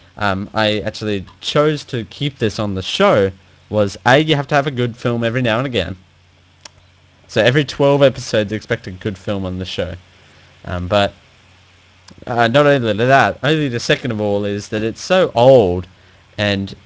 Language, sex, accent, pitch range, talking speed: English, male, Australian, 95-125 Hz, 180 wpm